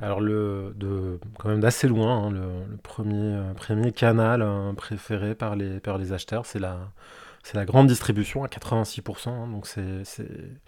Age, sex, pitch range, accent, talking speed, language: 20-39, male, 100-115 Hz, French, 185 wpm, French